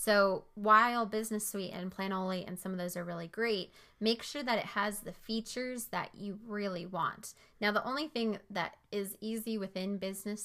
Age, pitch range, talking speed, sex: 20-39, 185-220 Hz, 190 wpm, female